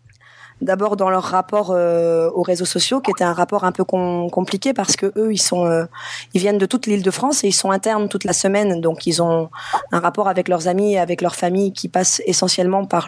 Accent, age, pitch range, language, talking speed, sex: French, 20-39, 175-205 Hz, French, 235 wpm, female